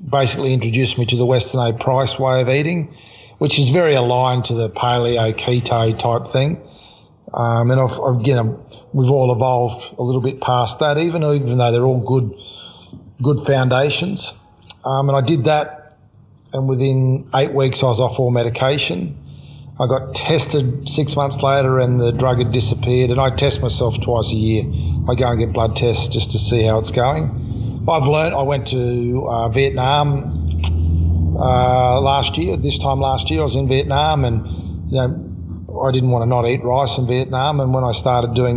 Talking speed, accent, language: 185 wpm, Australian, English